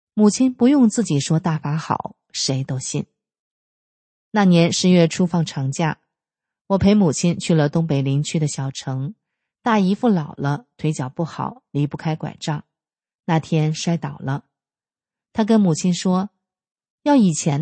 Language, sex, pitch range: Chinese, female, 150-205 Hz